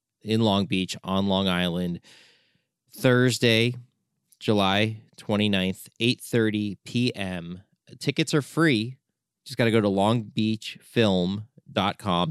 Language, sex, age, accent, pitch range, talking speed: English, male, 30-49, American, 100-130 Hz, 95 wpm